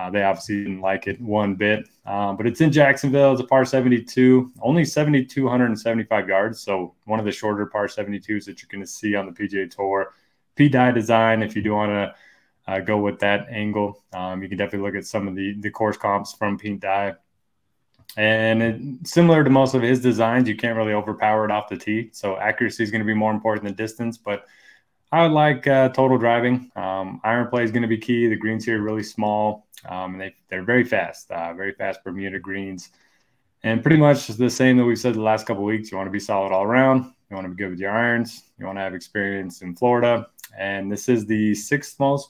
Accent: American